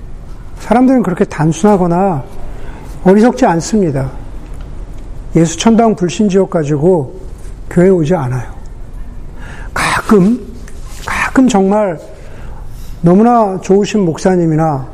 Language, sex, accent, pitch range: Korean, male, native, 150-195 Hz